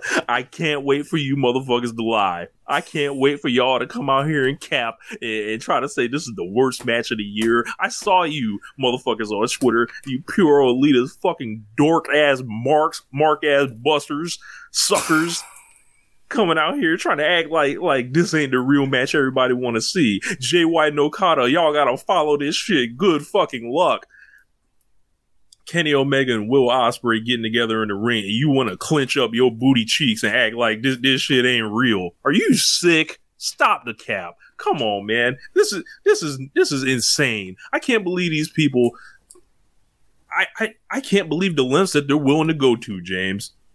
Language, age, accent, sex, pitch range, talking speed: English, 20-39, American, male, 115-150 Hz, 190 wpm